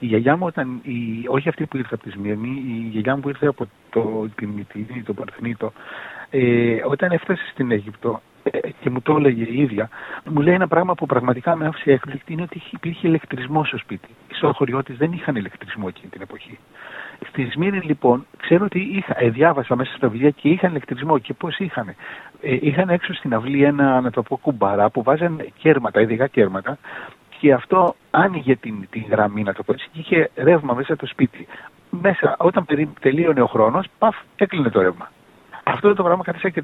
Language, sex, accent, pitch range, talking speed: Greek, male, native, 120-160 Hz, 195 wpm